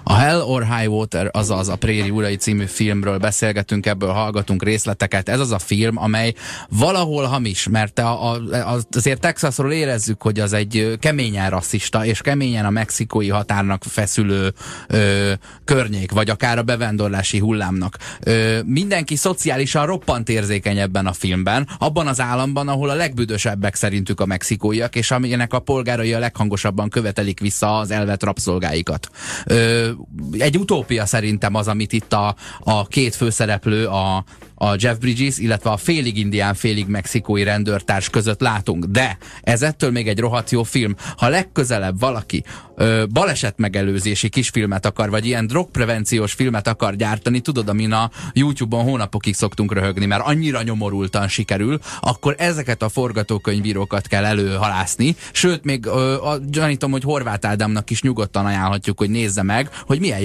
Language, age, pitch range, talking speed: Hungarian, 20-39, 105-125 Hz, 150 wpm